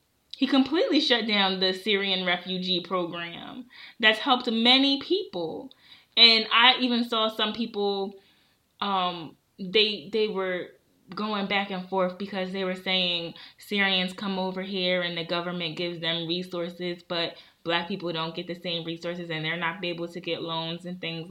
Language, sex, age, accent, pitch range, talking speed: English, female, 20-39, American, 175-220 Hz, 160 wpm